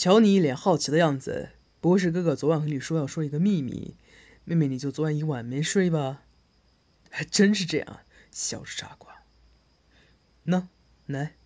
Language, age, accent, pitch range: Chinese, 20-39, native, 120-160 Hz